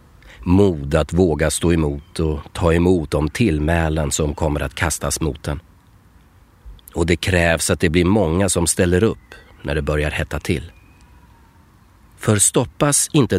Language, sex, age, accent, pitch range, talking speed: Swedish, male, 30-49, native, 80-100 Hz, 150 wpm